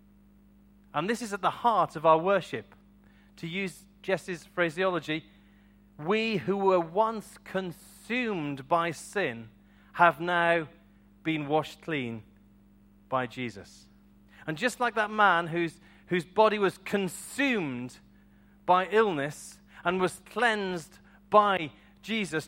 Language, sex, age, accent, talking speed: English, male, 40-59, British, 115 wpm